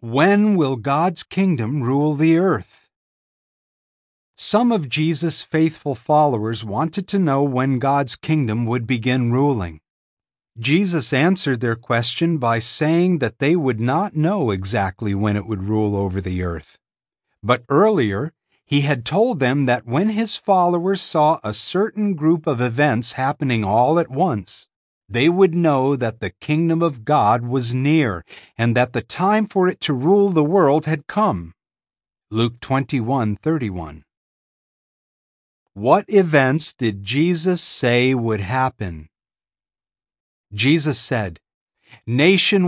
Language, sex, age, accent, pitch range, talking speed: English, male, 50-69, American, 115-170 Hz, 130 wpm